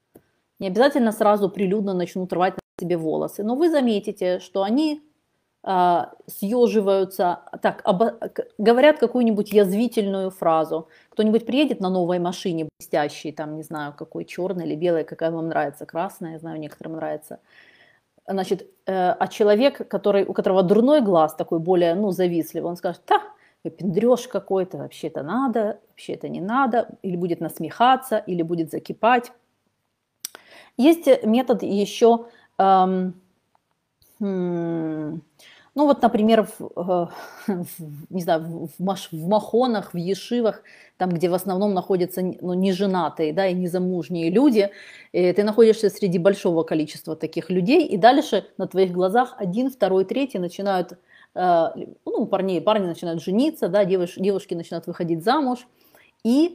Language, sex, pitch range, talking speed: Russian, female, 175-220 Hz, 140 wpm